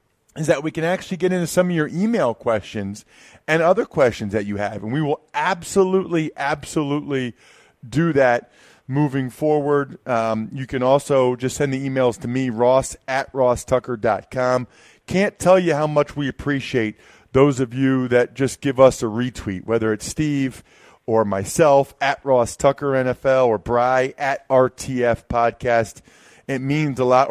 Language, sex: English, male